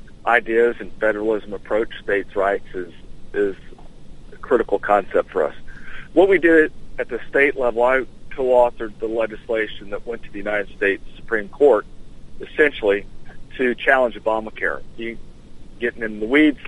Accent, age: American, 40-59